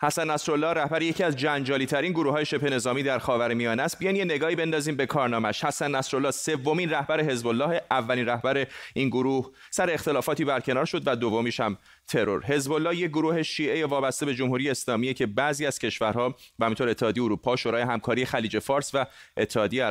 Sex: male